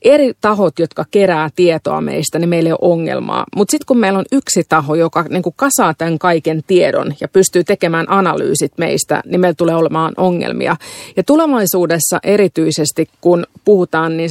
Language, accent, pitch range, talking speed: Finnish, native, 170-210 Hz, 170 wpm